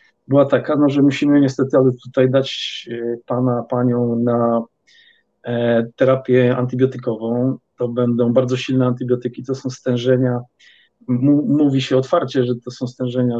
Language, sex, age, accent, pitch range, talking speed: English, male, 40-59, Polish, 125-140 Hz, 140 wpm